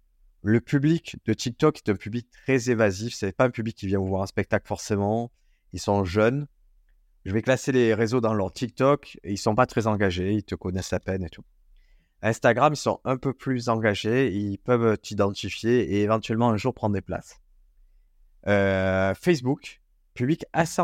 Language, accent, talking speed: French, French, 190 wpm